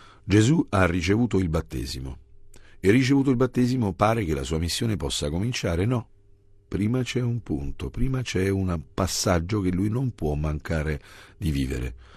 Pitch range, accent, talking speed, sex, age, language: 75-100 Hz, native, 160 wpm, male, 50-69, Italian